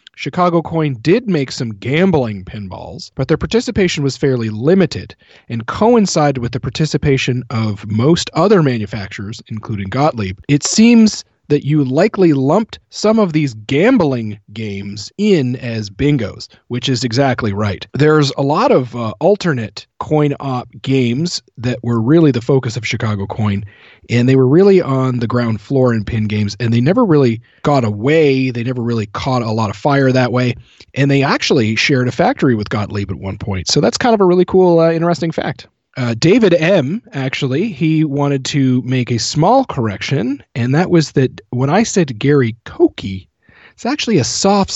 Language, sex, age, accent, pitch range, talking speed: English, male, 40-59, American, 115-160 Hz, 175 wpm